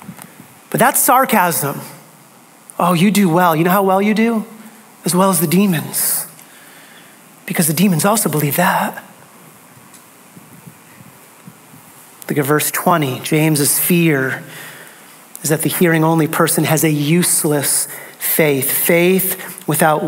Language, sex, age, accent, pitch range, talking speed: English, male, 30-49, American, 150-185 Hz, 125 wpm